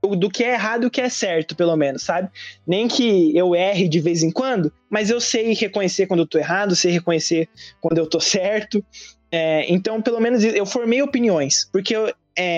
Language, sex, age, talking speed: Portuguese, male, 20-39, 200 wpm